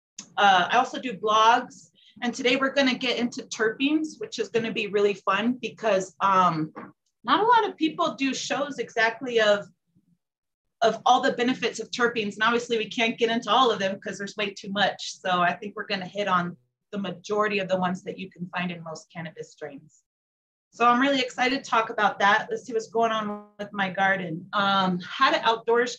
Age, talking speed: 30-49, 210 wpm